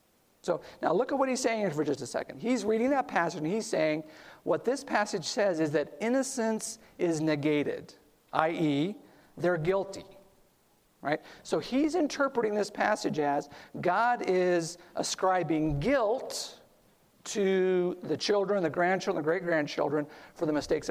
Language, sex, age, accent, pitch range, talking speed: English, male, 50-69, American, 155-200 Hz, 150 wpm